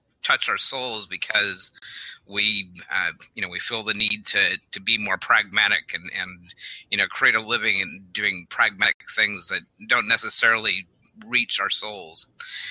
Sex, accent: male, American